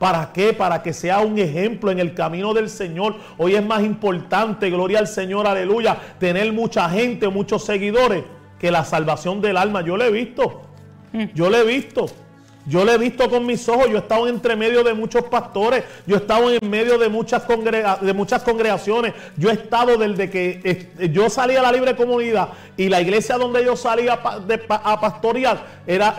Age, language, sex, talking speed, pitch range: 40-59, Spanish, male, 185 wpm, 195-240 Hz